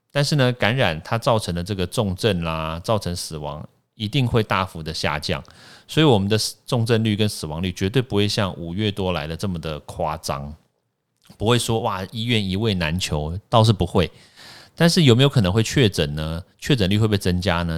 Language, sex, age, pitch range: Chinese, male, 30-49, 85-115 Hz